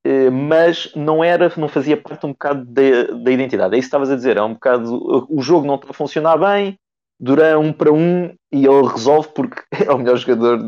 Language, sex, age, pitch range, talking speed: Portuguese, male, 30-49, 115-145 Hz, 215 wpm